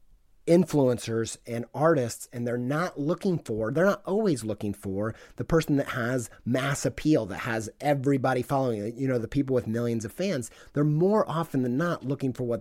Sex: male